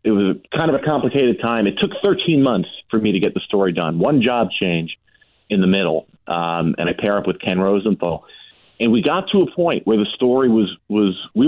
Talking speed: 230 wpm